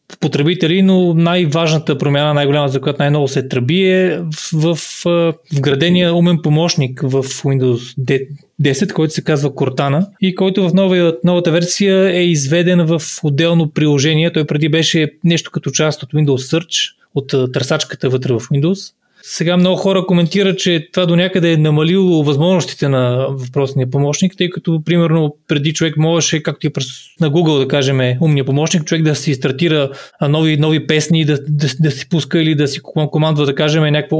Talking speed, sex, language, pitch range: 165 wpm, male, Bulgarian, 140-175 Hz